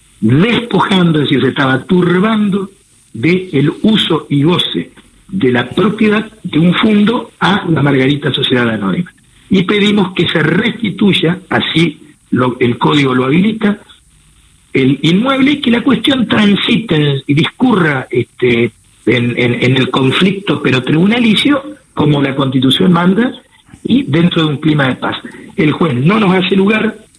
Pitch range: 135-185 Hz